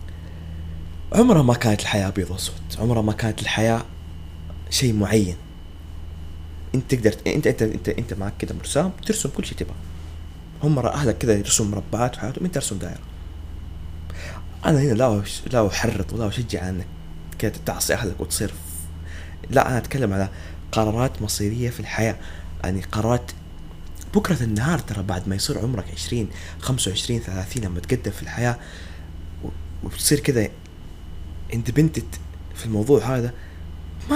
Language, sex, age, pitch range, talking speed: Arabic, male, 20-39, 80-120 Hz, 135 wpm